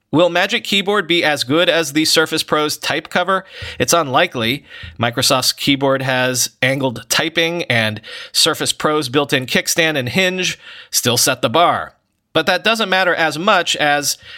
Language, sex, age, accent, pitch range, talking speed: English, male, 30-49, American, 130-175 Hz, 155 wpm